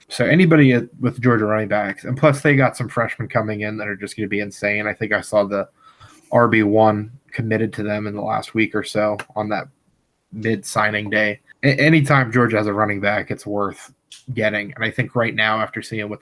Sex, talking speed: male, 210 wpm